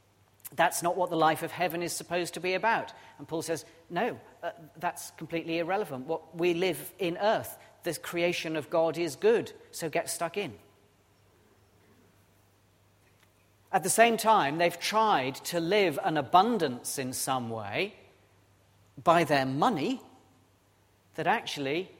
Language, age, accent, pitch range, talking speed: English, 40-59, British, 105-175 Hz, 145 wpm